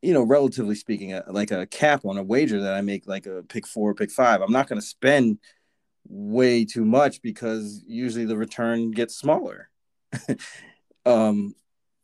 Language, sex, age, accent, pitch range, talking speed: English, male, 30-49, American, 110-135 Hz, 170 wpm